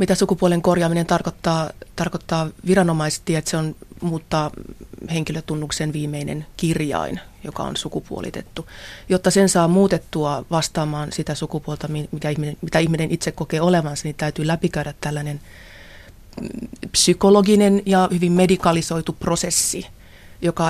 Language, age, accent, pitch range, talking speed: Finnish, 30-49, native, 155-175 Hz, 115 wpm